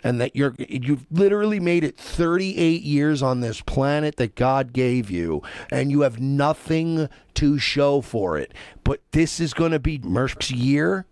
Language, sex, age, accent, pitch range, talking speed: English, male, 50-69, American, 125-175 Hz, 180 wpm